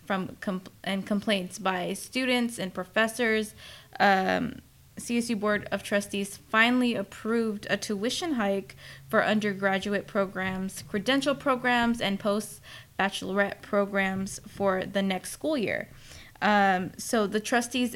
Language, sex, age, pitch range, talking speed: English, female, 10-29, 195-220 Hz, 115 wpm